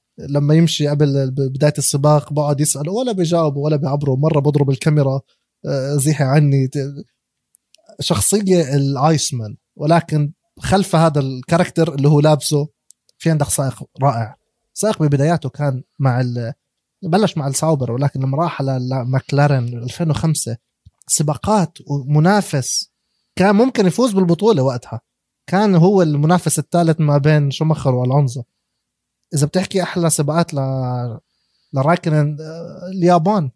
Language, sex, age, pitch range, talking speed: Arabic, male, 20-39, 135-175 Hz, 115 wpm